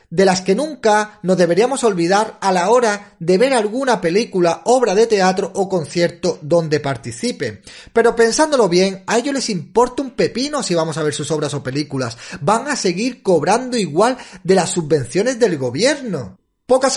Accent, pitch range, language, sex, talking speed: Spanish, 155-205 Hz, Spanish, male, 175 wpm